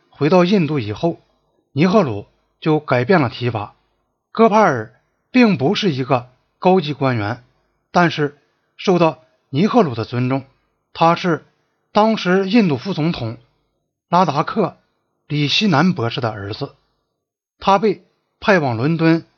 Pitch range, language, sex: 130-190 Hz, Chinese, male